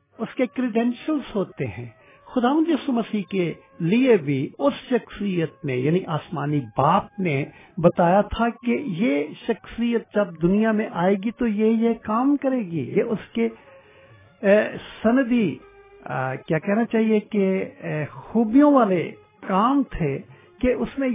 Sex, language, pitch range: male, English, 150-225 Hz